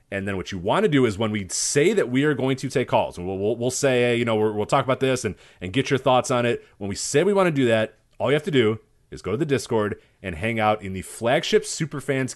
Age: 30-49